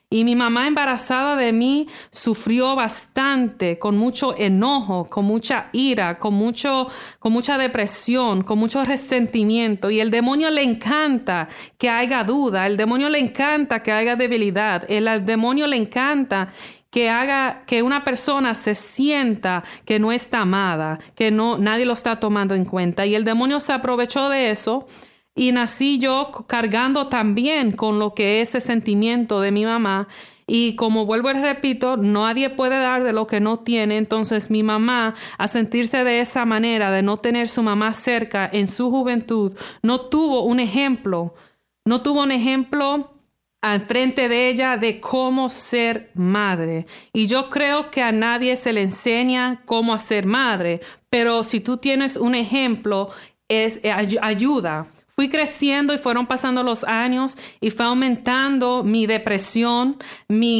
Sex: female